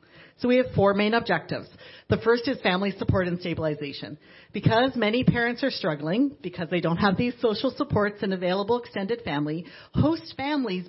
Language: English